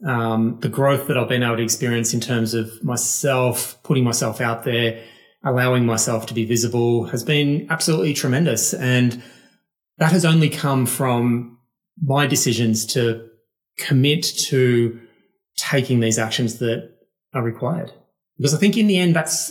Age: 30-49